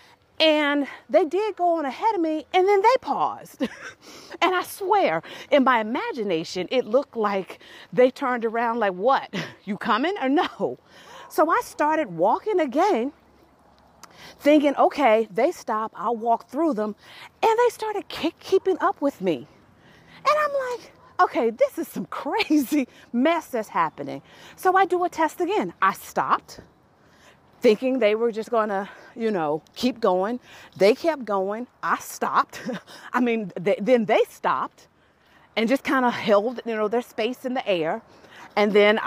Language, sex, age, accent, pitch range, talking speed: English, female, 40-59, American, 220-340 Hz, 160 wpm